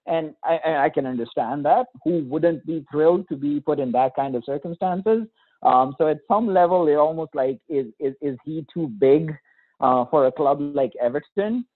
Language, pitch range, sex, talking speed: English, 140-220 Hz, male, 195 wpm